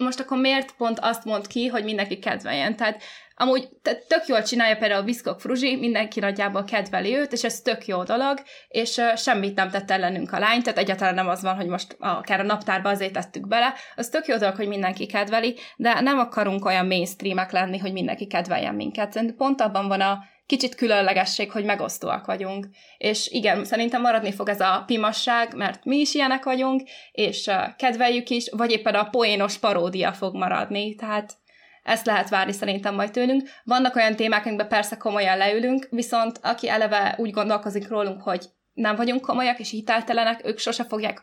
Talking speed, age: 185 wpm, 20-39